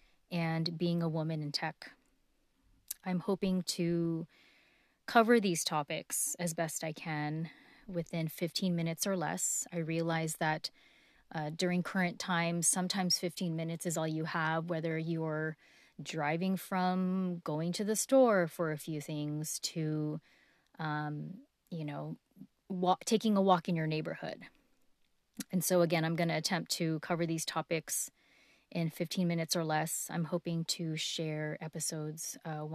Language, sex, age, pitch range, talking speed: English, female, 30-49, 160-180 Hz, 145 wpm